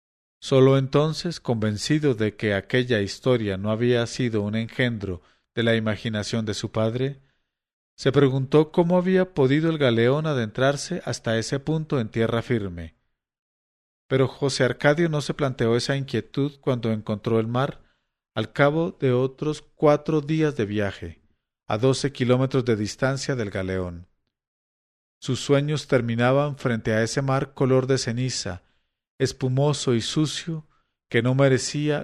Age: 40-59